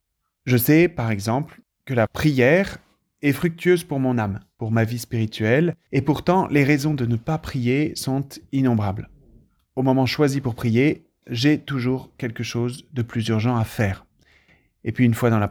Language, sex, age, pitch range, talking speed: French, male, 30-49, 110-135 Hz, 180 wpm